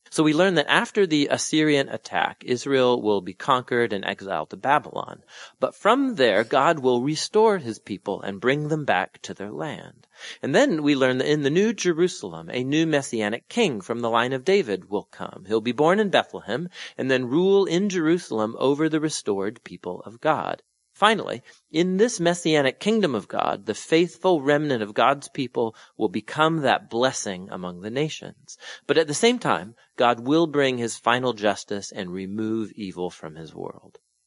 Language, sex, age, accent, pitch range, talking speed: English, male, 40-59, American, 110-160 Hz, 180 wpm